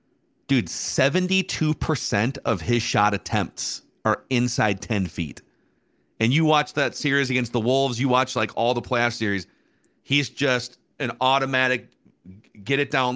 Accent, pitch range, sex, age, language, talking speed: American, 105-140 Hz, male, 40-59, English, 145 wpm